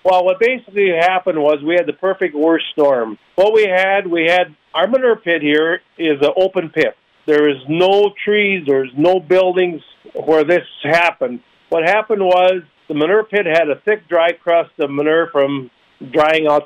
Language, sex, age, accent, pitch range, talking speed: English, male, 50-69, American, 150-185 Hz, 180 wpm